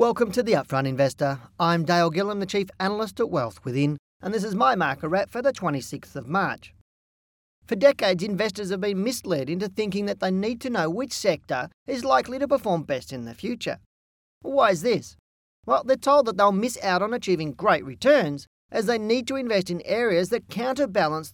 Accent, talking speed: Australian, 200 wpm